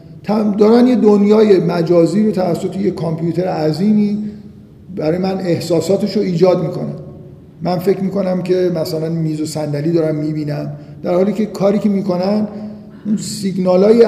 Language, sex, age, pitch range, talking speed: Persian, male, 50-69, 170-210 Hz, 140 wpm